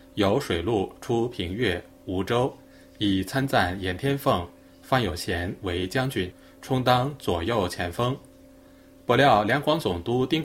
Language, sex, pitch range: Chinese, male, 95-145 Hz